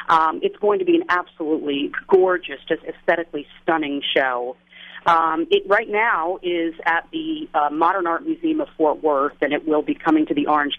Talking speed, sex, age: 190 wpm, female, 40-59